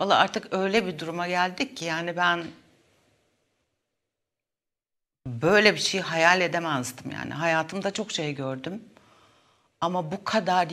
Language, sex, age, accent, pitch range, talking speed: Turkish, female, 60-79, native, 165-205 Hz, 125 wpm